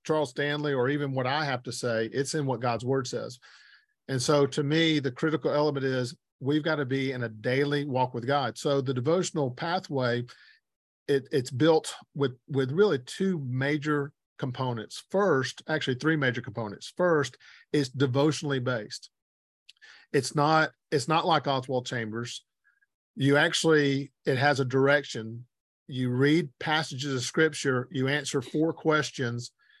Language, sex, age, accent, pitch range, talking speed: English, male, 40-59, American, 125-150 Hz, 155 wpm